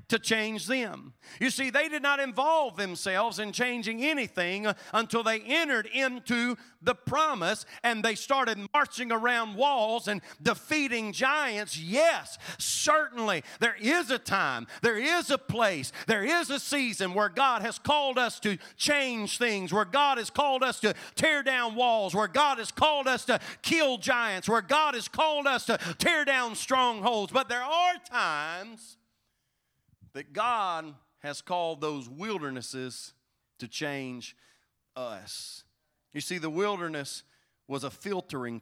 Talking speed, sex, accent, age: 150 wpm, male, American, 40-59